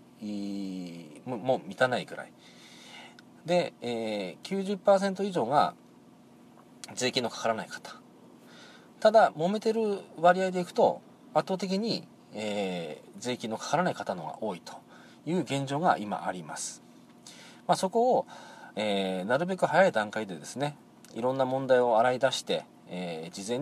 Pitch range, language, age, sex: 120-200 Hz, Japanese, 40-59, male